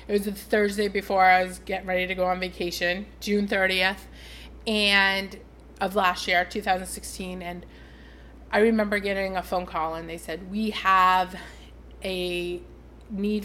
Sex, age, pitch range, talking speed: female, 30-49, 180-210 Hz, 150 wpm